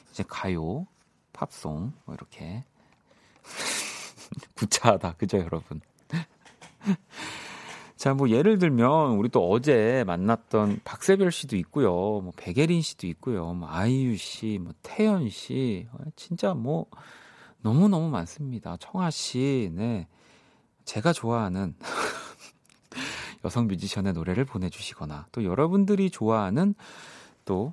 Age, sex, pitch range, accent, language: 40-59, male, 100-155 Hz, native, Korean